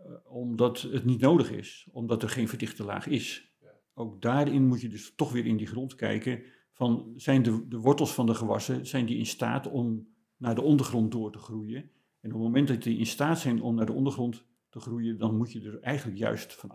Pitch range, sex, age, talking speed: 115-140 Hz, male, 50-69, 225 wpm